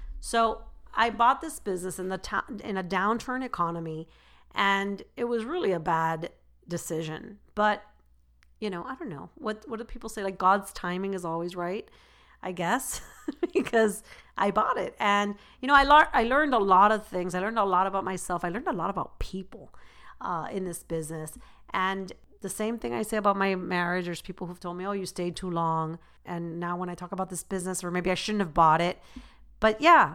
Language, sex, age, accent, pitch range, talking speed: English, female, 40-59, American, 175-230 Hz, 210 wpm